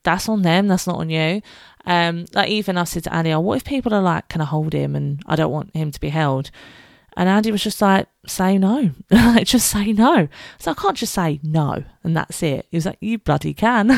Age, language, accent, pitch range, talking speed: 20-39, English, British, 160-225 Hz, 255 wpm